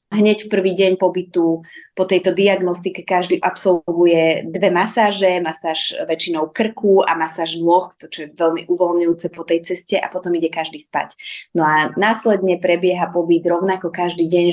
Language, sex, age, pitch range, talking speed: Slovak, female, 20-39, 170-200 Hz, 155 wpm